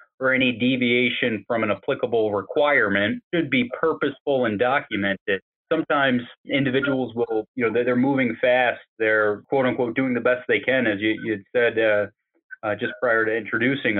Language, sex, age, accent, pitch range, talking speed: English, male, 30-49, American, 110-125 Hz, 165 wpm